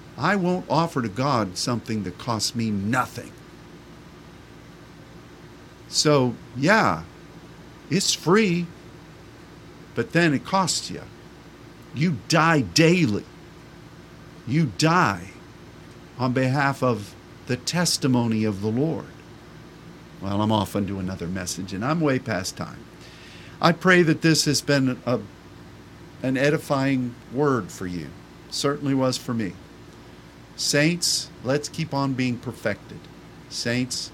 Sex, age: male, 50-69